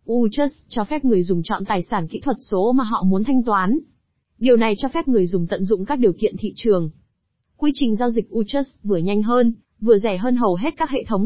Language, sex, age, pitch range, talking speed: Vietnamese, female, 20-39, 200-260 Hz, 240 wpm